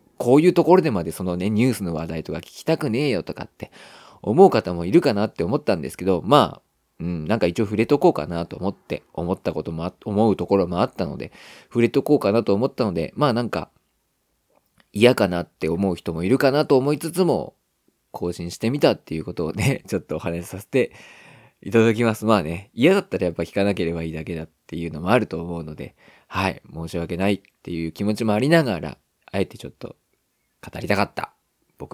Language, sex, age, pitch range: Japanese, male, 20-39, 85-130 Hz